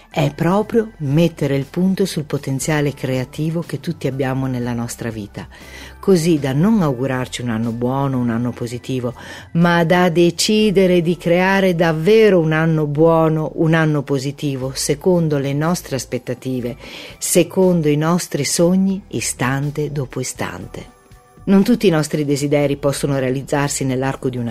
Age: 50-69